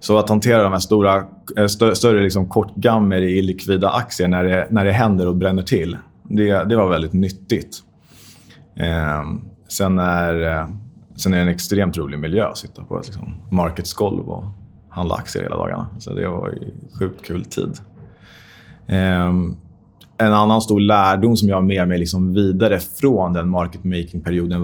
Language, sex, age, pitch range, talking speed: Swedish, male, 30-49, 90-105 Hz, 165 wpm